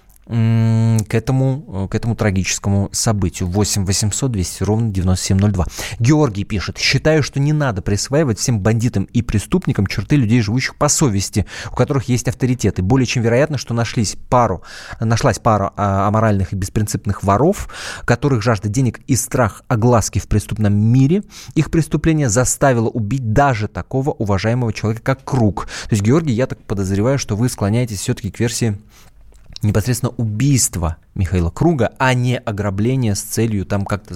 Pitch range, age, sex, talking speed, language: 100-125 Hz, 20-39, male, 150 wpm, Russian